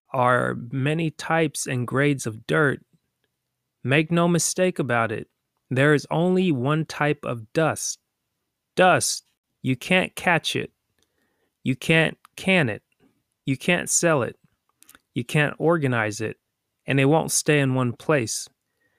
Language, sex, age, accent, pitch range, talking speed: English, male, 30-49, American, 125-160 Hz, 135 wpm